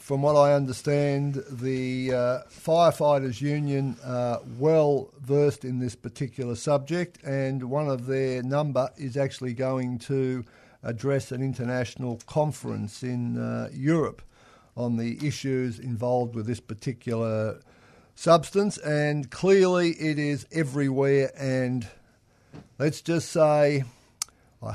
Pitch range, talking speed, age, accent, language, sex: 120-145 Hz, 120 wpm, 50-69, Australian, English, male